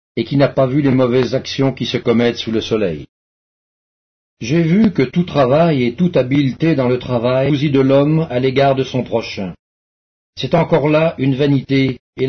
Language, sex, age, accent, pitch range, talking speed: English, male, 50-69, French, 120-150 Hz, 190 wpm